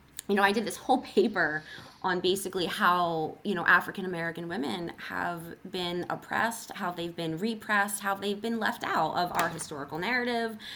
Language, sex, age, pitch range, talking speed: English, female, 20-39, 170-220 Hz, 175 wpm